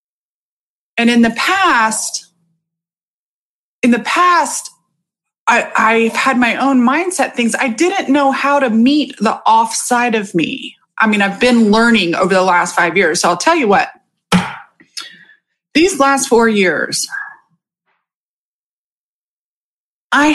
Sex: female